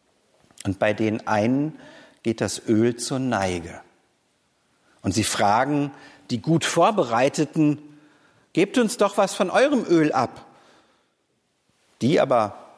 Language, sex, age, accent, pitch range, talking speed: German, male, 50-69, German, 120-165 Hz, 115 wpm